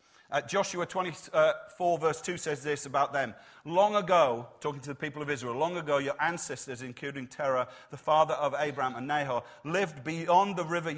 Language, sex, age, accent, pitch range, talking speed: English, male, 40-59, British, 155-195 Hz, 180 wpm